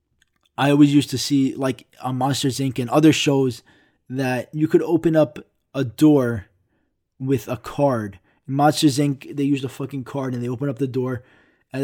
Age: 20-39